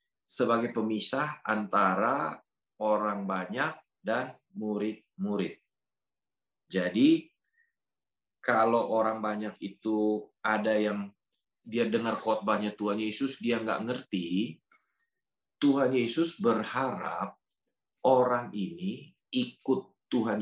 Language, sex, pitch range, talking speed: English, male, 105-140 Hz, 85 wpm